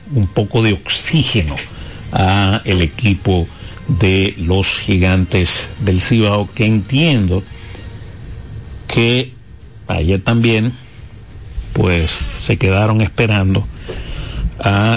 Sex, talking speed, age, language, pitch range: male, 90 wpm, 60-79, Spanish, 95-115 Hz